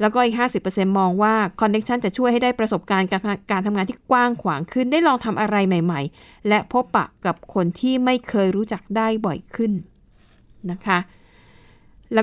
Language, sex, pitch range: Thai, female, 190-230 Hz